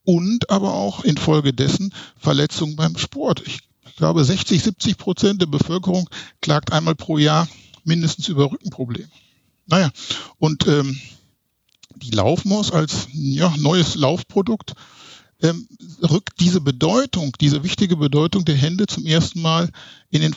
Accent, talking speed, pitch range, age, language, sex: German, 130 wpm, 140-180 Hz, 60-79, German, male